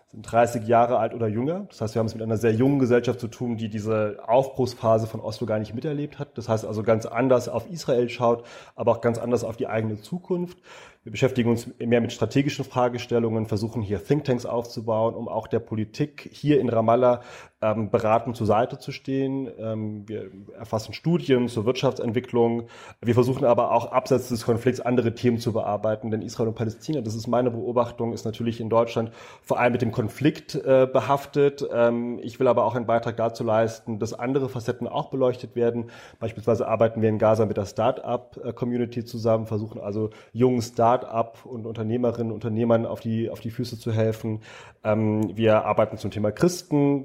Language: German